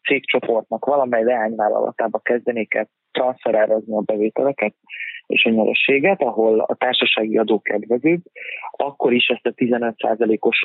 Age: 20-39